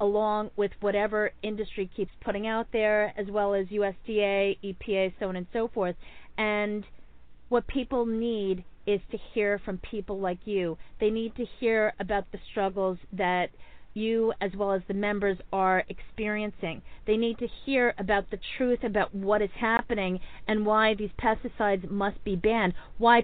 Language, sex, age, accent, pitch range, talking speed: English, female, 40-59, American, 190-225 Hz, 165 wpm